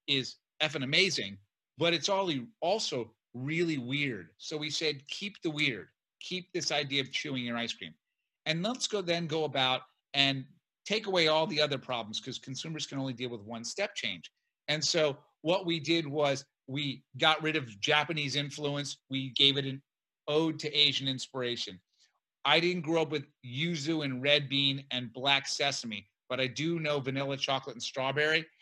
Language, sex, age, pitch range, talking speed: English, male, 40-59, 130-160 Hz, 175 wpm